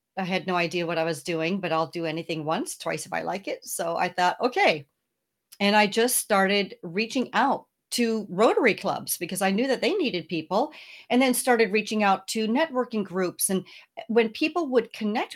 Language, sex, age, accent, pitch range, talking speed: English, female, 40-59, American, 185-235 Hz, 200 wpm